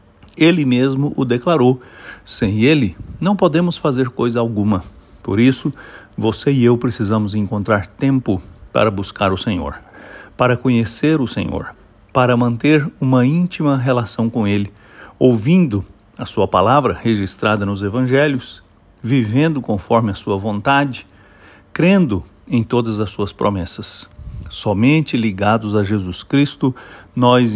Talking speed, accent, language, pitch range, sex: 125 wpm, Brazilian, English, 100-130 Hz, male